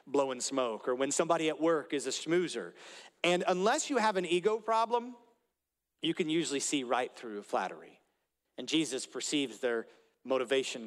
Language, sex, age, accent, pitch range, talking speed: English, male, 40-59, American, 130-170 Hz, 160 wpm